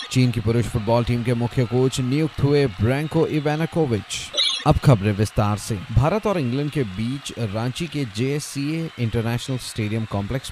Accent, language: native, Hindi